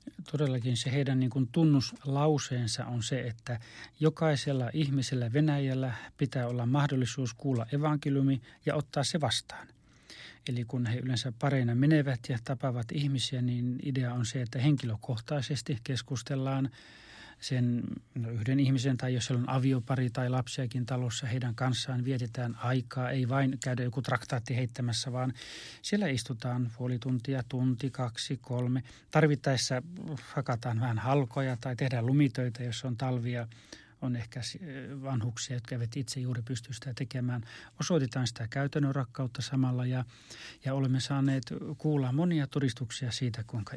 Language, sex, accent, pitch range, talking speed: Finnish, male, native, 125-140 Hz, 135 wpm